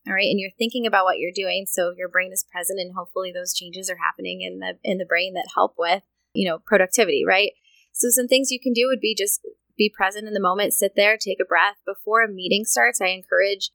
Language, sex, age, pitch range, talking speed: English, female, 20-39, 180-225 Hz, 250 wpm